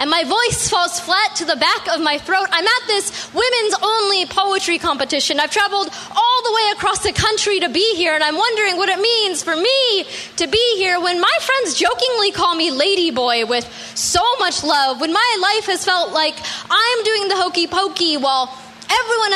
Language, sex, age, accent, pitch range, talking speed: English, female, 10-29, American, 320-410 Hz, 200 wpm